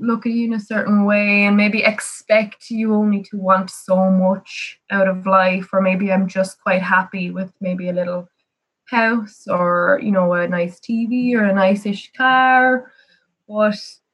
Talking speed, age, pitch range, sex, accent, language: 180 wpm, 20-39, 185-215 Hz, female, Irish, English